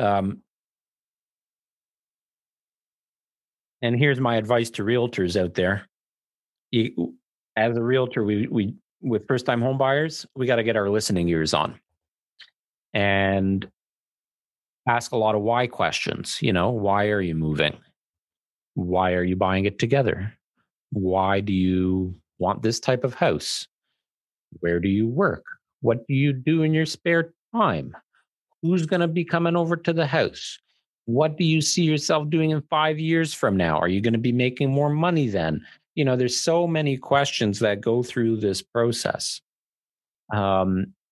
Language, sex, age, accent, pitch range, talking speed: English, male, 40-59, American, 100-145 Hz, 155 wpm